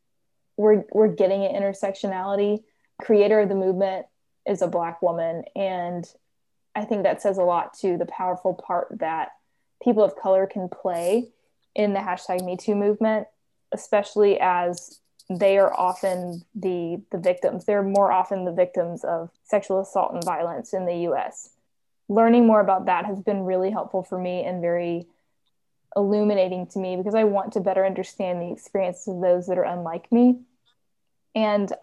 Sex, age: female, 20-39